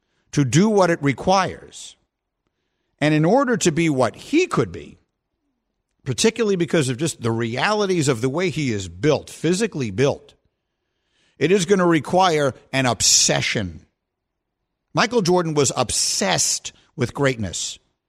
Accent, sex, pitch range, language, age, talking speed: American, male, 130-205 Hz, English, 50-69, 135 wpm